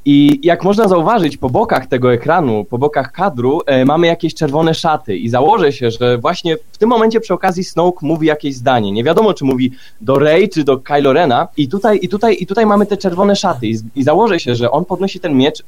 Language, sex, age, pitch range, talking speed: Polish, male, 20-39, 135-180 Hz, 225 wpm